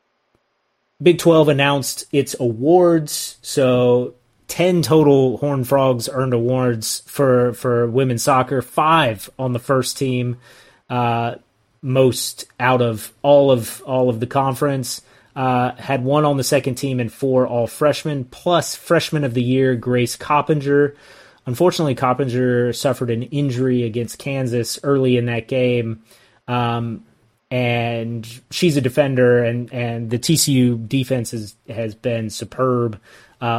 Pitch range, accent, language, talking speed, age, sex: 120-140 Hz, American, English, 135 wpm, 30-49, male